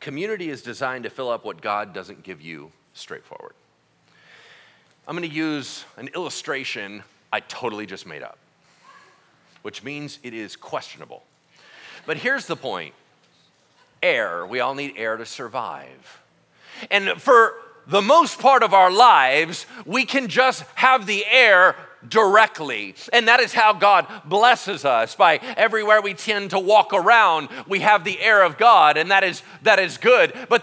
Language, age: English, 40-59